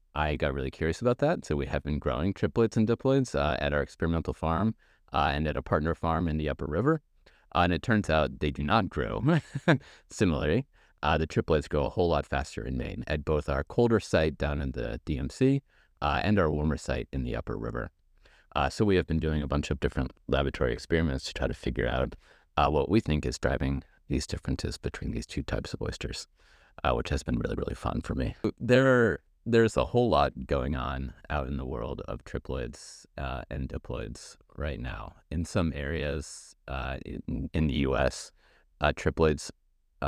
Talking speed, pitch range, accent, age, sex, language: 205 wpm, 70-95 Hz, American, 30-49, male, English